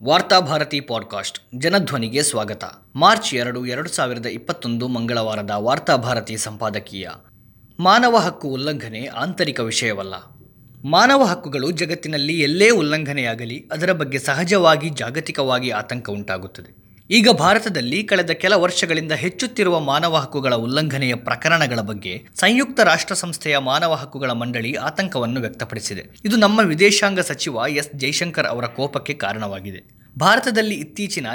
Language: Kannada